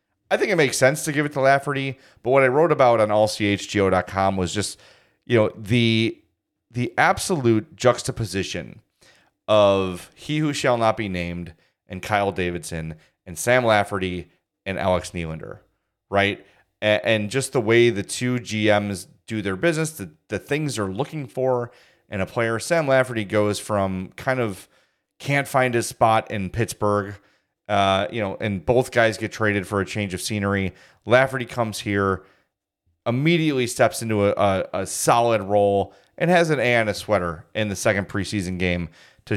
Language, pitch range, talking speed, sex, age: English, 95-125 Hz, 170 wpm, male, 30-49